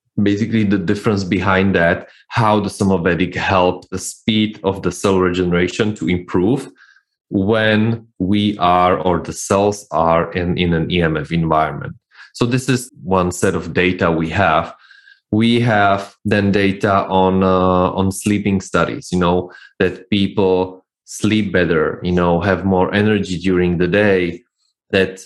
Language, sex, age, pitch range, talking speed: English, male, 20-39, 90-105 Hz, 145 wpm